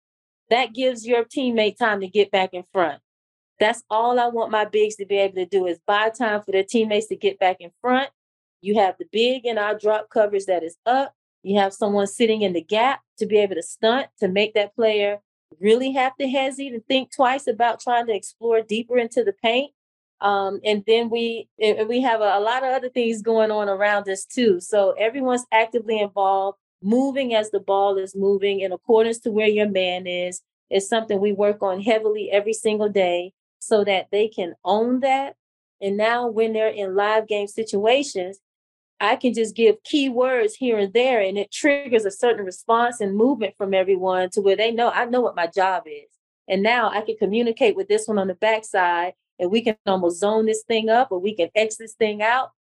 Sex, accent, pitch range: female, American, 200-235 Hz